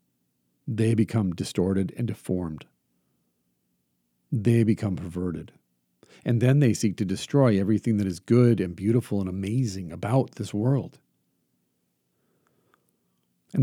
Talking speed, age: 115 wpm, 50-69